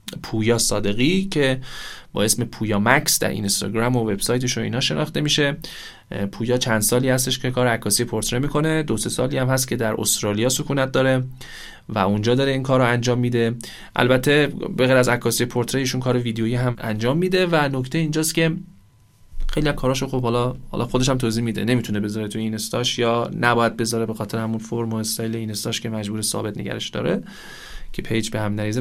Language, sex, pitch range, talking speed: Arabic, male, 115-145 Hz, 175 wpm